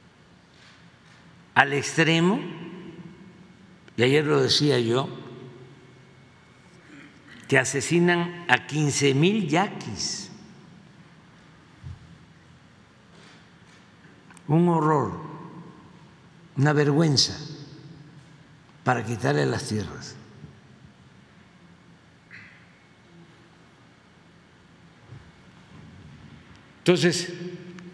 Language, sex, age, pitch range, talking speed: Spanish, male, 60-79, 135-180 Hz, 45 wpm